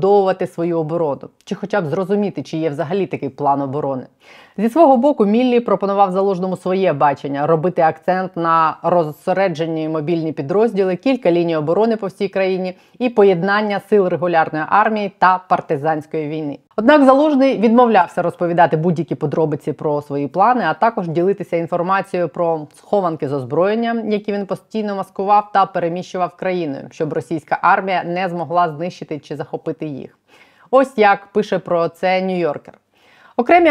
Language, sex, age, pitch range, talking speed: Ukrainian, female, 20-39, 165-210 Hz, 145 wpm